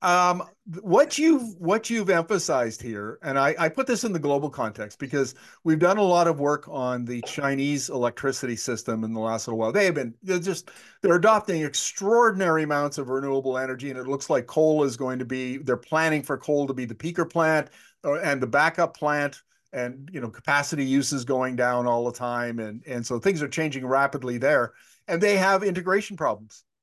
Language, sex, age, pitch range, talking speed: English, male, 50-69, 130-170 Hz, 200 wpm